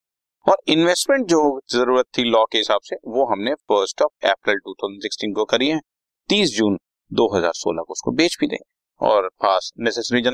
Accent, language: native, Hindi